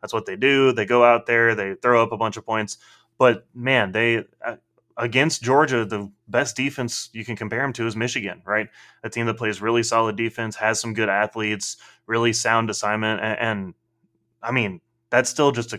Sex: male